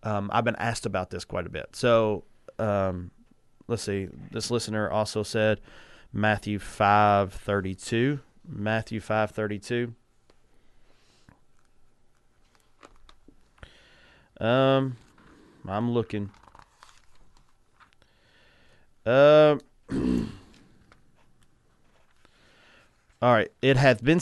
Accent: American